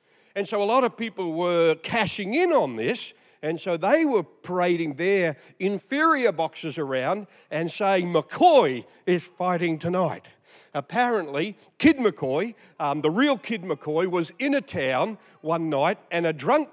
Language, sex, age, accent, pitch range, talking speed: English, male, 50-69, Australian, 170-230 Hz, 155 wpm